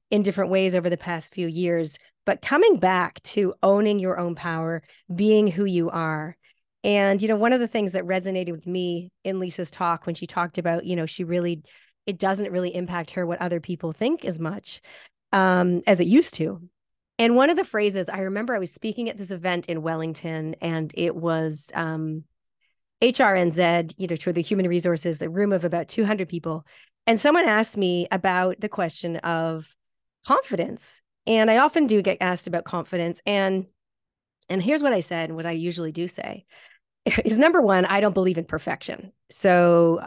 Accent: American